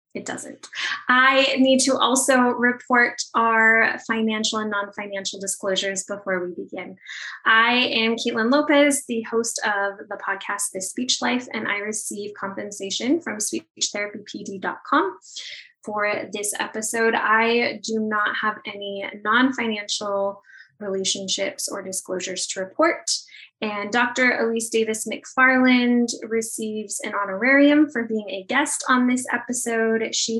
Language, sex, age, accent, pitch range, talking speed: English, female, 10-29, American, 200-245 Hz, 125 wpm